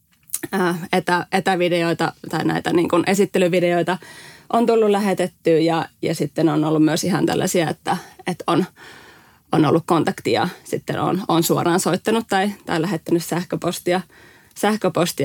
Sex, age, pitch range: female, 20-39, 165-190 Hz